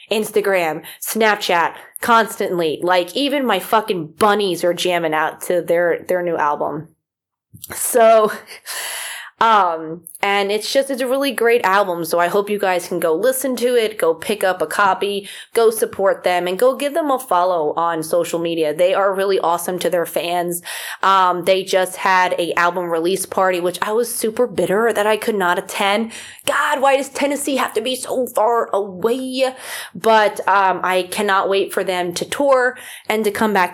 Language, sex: English, female